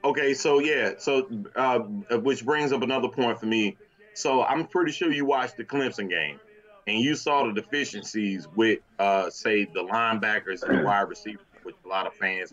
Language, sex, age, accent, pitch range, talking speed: English, male, 30-49, American, 110-180 Hz, 185 wpm